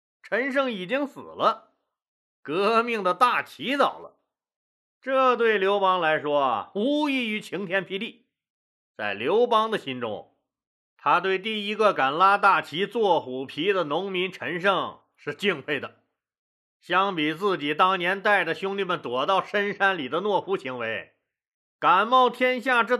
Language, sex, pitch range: Chinese, male, 180-235 Hz